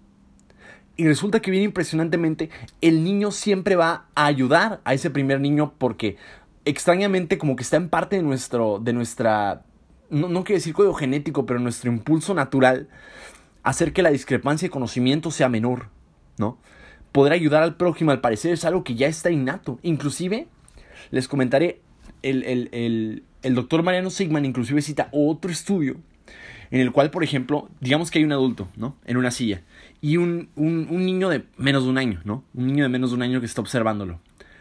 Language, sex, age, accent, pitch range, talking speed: Spanish, male, 20-39, Mexican, 125-170 Hz, 185 wpm